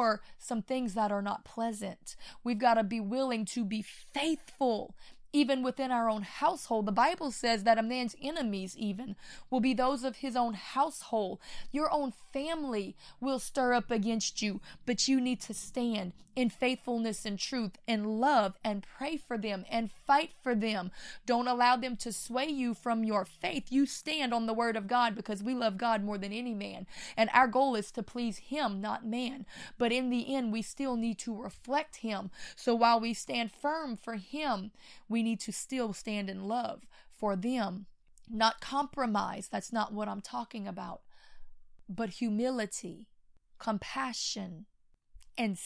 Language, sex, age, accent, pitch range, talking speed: English, female, 20-39, American, 210-255 Hz, 175 wpm